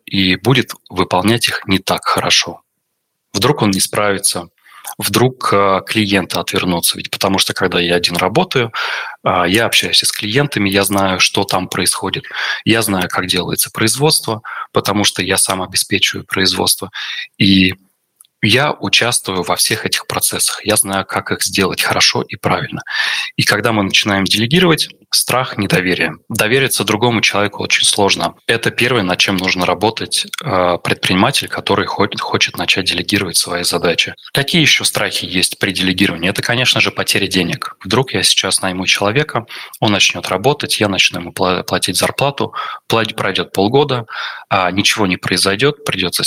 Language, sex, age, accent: Russian, male, 20-39, native